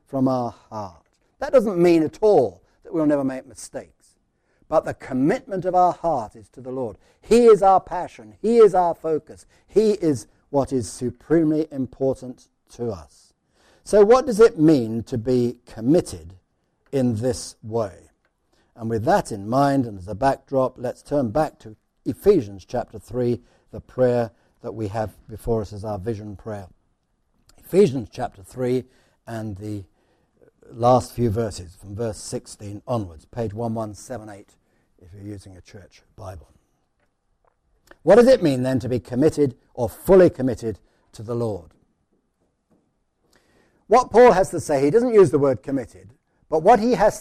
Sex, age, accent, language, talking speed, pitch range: male, 60-79, British, English, 160 wpm, 110-155 Hz